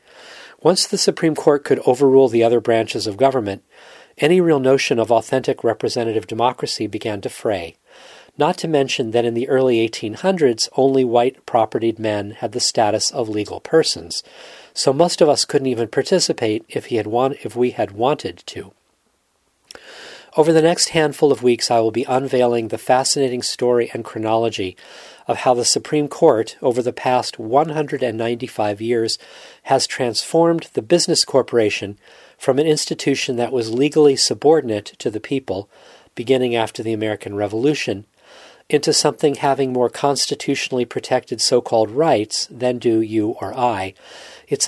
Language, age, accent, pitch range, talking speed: English, 40-59, American, 115-145 Hz, 150 wpm